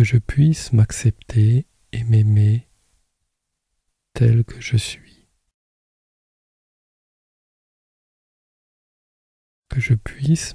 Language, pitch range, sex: French, 105-125 Hz, male